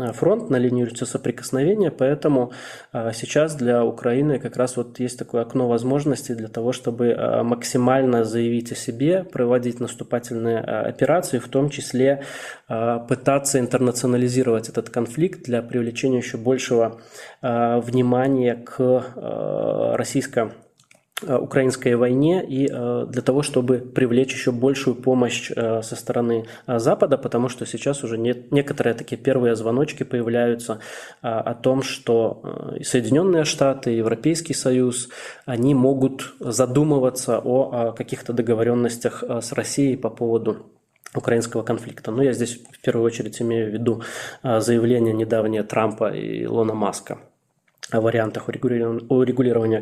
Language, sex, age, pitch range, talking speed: Russian, male, 20-39, 120-135 Hz, 120 wpm